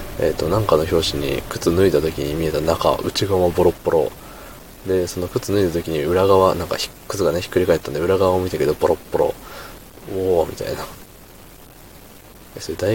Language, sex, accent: Japanese, male, native